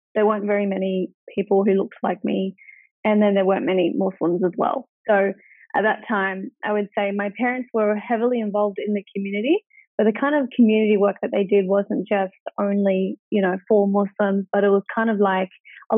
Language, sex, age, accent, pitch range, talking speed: English, female, 20-39, Australian, 195-235 Hz, 205 wpm